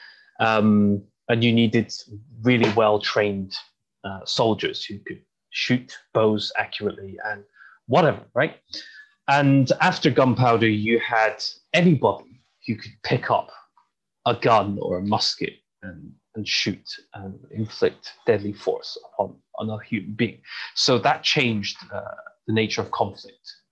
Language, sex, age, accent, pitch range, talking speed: English, male, 30-49, British, 105-130 Hz, 125 wpm